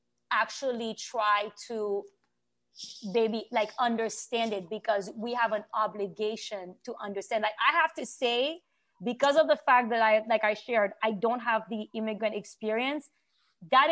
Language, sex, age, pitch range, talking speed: English, female, 20-39, 215-260 Hz, 150 wpm